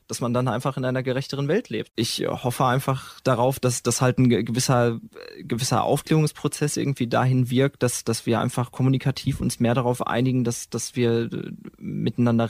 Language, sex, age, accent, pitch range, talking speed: German, male, 20-39, German, 120-135 Hz, 175 wpm